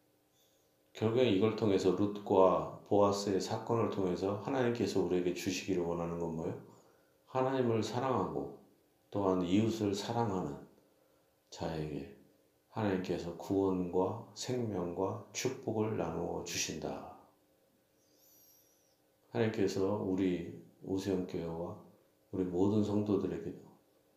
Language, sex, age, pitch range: Korean, male, 40-59, 85-100 Hz